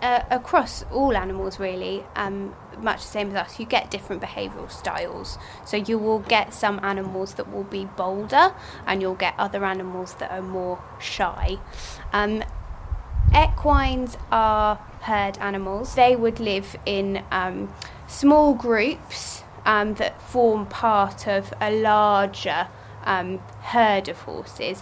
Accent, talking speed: British, 140 wpm